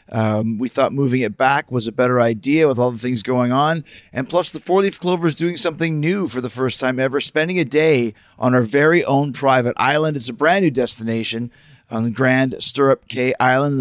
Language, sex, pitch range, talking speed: English, male, 120-155 Hz, 225 wpm